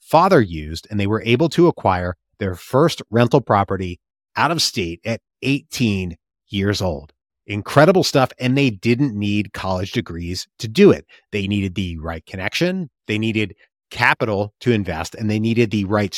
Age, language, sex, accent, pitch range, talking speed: 30-49, English, male, American, 95-120 Hz, 165 wpm